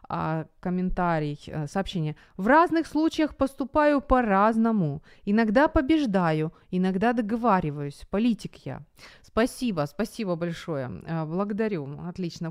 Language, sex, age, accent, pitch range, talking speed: Ukrainian, female, 30-49, native, 175-245 Hz, 85 wpm